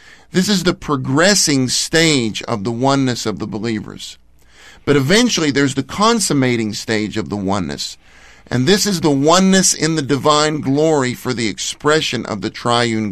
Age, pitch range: 50-69, 125-175 Hz